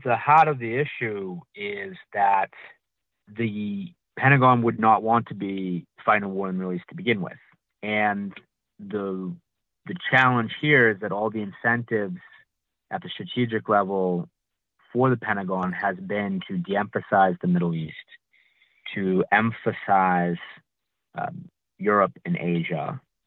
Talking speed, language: 140 wpm, English